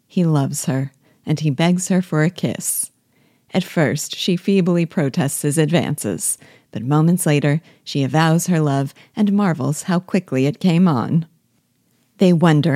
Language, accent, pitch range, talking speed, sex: English, American, 145-180 Hz, 155 wpm, female